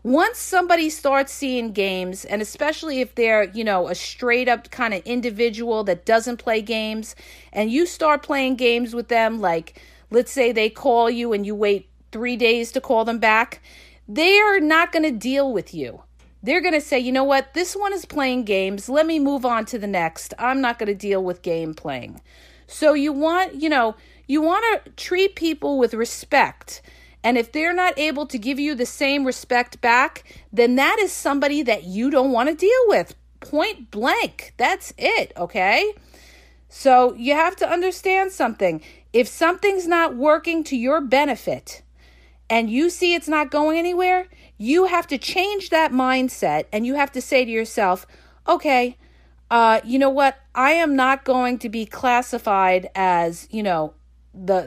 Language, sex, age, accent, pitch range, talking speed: English, female, 40-59, American, 220-310 Hz, 185 wpm